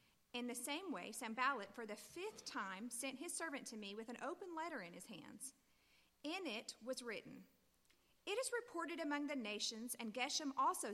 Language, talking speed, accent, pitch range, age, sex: English, 185 wpm, American, 225-295 Hz, 40-59, female